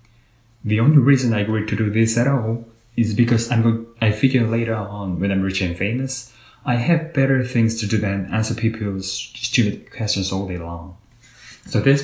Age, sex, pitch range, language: 30-49, male, 100-120 Hz, Korean